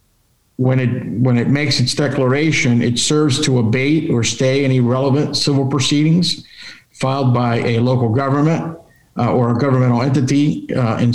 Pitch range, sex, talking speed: 120-145 Hz, male, 155 wpm